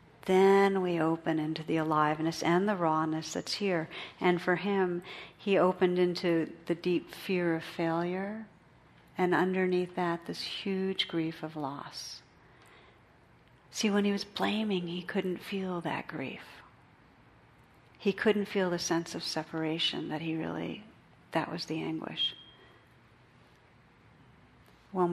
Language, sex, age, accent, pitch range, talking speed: English, female, 50-69, American, 165-195 Hz, 130 wpm